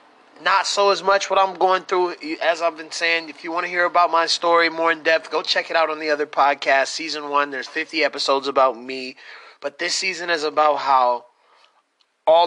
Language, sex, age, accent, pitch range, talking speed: English, male, 20-39, American, 140-165 Hz, 215 wpm